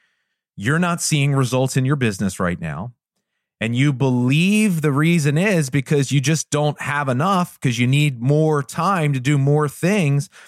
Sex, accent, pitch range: male, American, 115-165 Hz